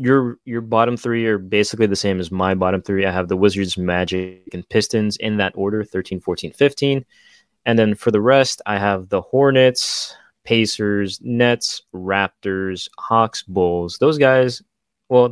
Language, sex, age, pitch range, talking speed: English, male, 20-39, 95-115 Hz, 165 wpm